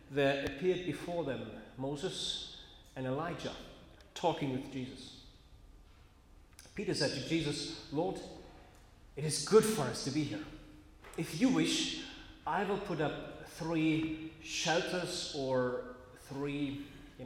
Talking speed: 120 wpm